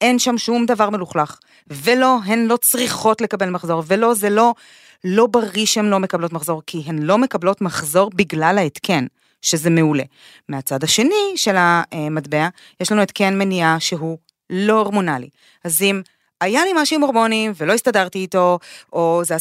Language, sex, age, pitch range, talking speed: Hebrew, female, 30-49, 165-220 Hz, 160 wpm